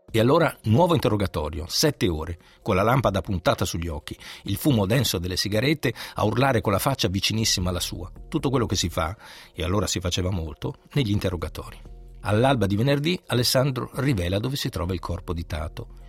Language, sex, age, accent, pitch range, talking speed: Italian, male, 50-69, native, 90-130 Hz, 185 wpm